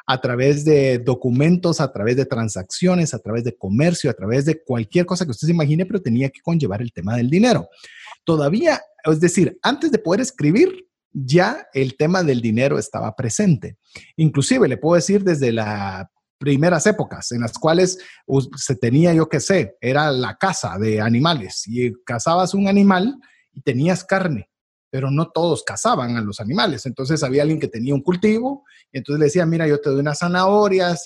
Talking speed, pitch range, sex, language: 180 wpm, 125-180 Hz, male, Spanish